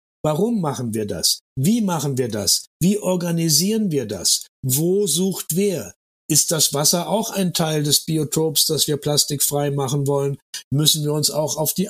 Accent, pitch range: German, 135-175 Hz